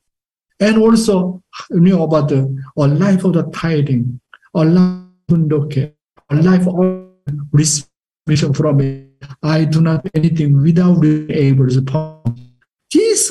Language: English